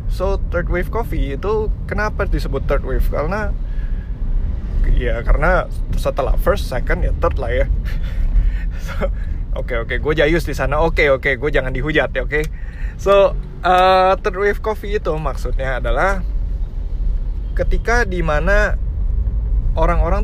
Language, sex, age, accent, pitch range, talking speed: Indonesian, male, 20-39, native, 105-175 Hz, 150 wpm